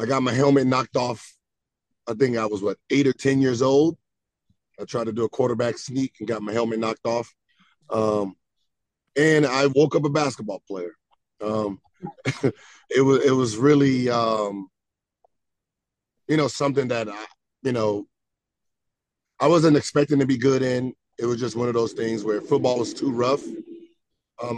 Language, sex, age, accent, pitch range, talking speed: English, male, 30-49, American, 110-135 Hz, 170 wpm